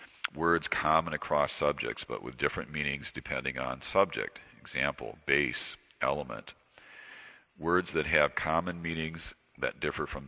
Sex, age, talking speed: male, 50-69, 130 wpm